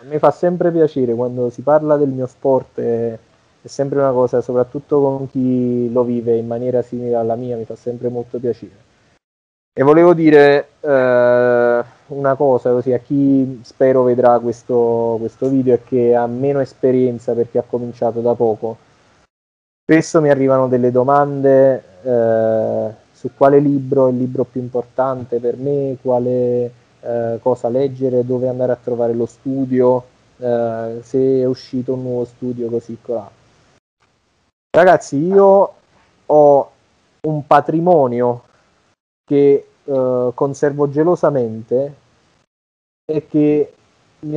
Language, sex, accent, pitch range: Italian, male, native, 120-140 Hz